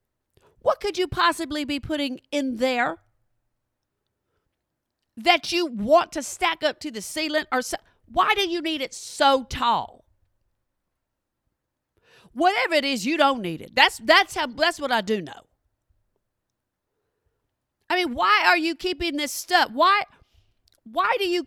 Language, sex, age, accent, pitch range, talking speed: English, female, 50-69, American, 240-335 Hz, 145 wpm